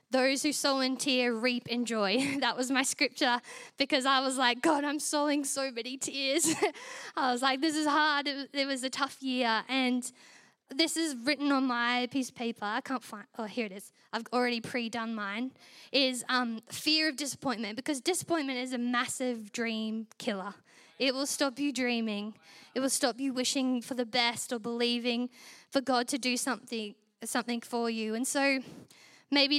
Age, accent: 10-29, Australian